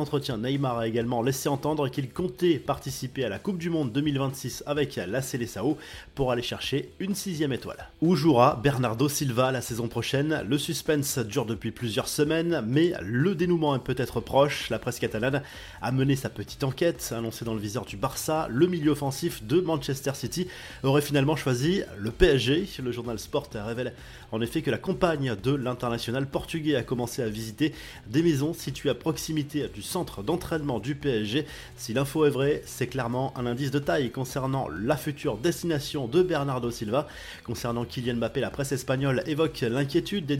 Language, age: French, 20-39